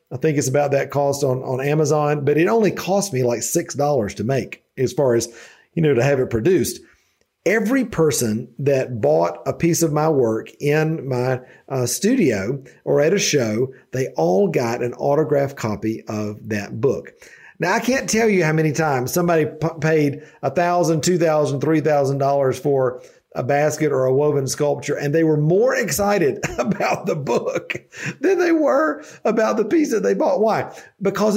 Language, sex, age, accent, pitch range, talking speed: English, male, 50-69, American, 135-185 Hz, 185 wpm